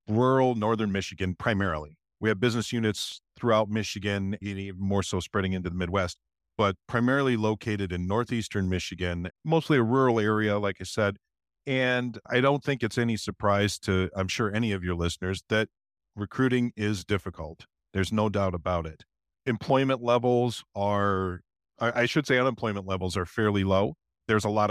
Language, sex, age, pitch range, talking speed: English, male, 50-69, 100-125 Hz, 165 wpm